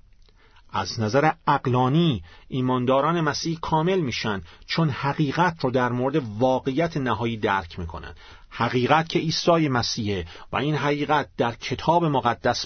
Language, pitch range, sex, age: Persian, 120-180 Hz, male, 40-59